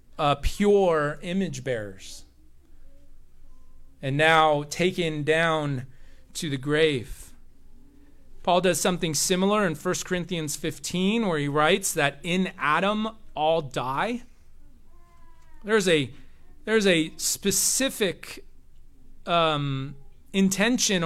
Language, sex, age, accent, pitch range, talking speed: English, male, 30-49, American, 135-185 Hz, 95 wpm